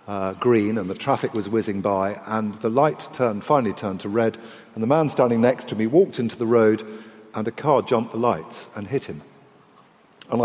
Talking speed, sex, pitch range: 210 wpm, male, 105-135 Hz